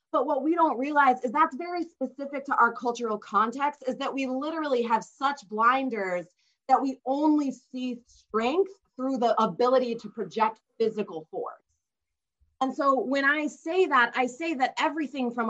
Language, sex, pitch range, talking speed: English, female, 215-275 Hz, 165 wpm